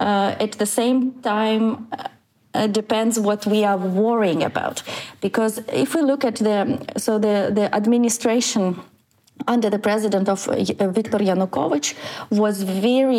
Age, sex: 30-49, female